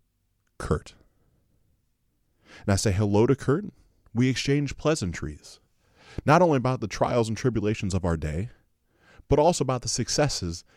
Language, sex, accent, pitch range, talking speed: English, male, American, 90-120 Hz, 140 wpm